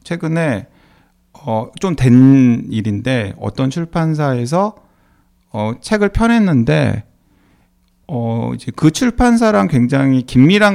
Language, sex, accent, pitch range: Korean, male, native, 115-180 Hz